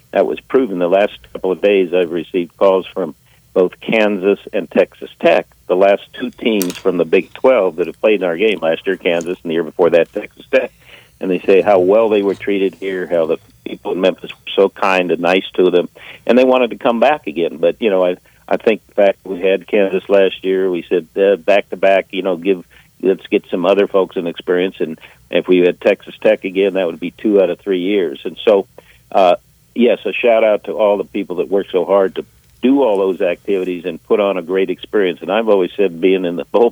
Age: 60-79